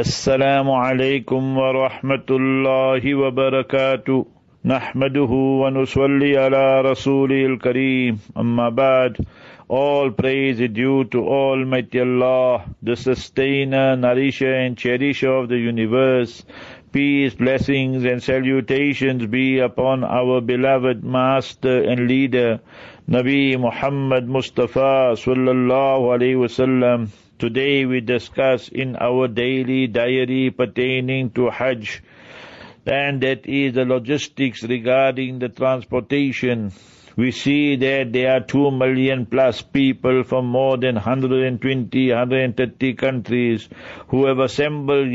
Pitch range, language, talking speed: 125-135 Hz, English, 110 wpm